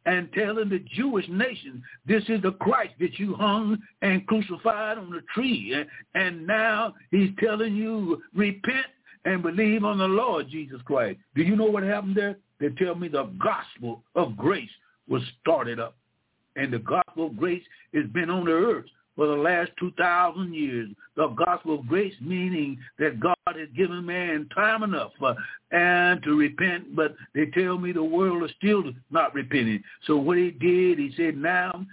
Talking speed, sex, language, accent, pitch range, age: 175 wpm, male, English, American, 155-185 Hz, 60-79